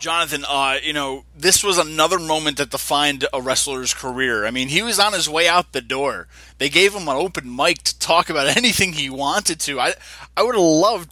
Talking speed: 220 wpm